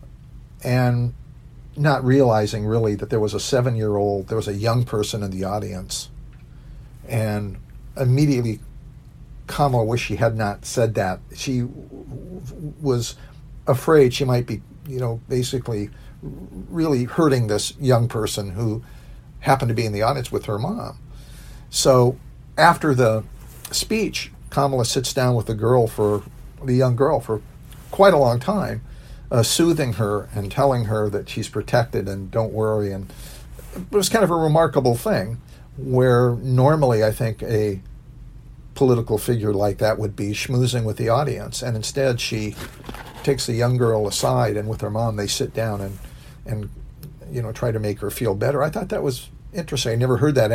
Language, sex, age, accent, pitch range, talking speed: English, male, 50-69, American, 110-135 Hz, 165 wpm